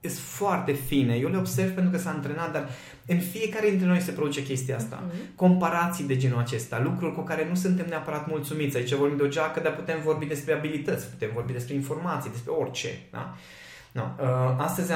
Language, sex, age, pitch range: Romanian, male, 20-39, 125-170 Hz